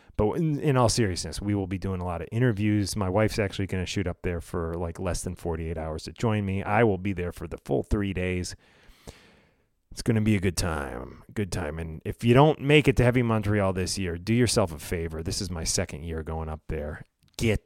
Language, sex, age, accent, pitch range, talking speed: English, male, 30-49, American, 85-110 Hz, 245 wpm